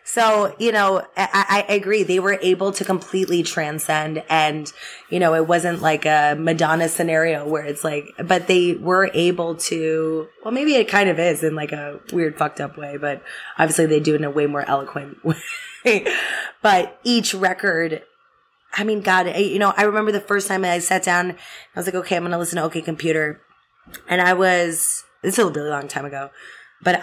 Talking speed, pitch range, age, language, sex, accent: 205 wpm, 150-180 Hz, 20-39, English, female, American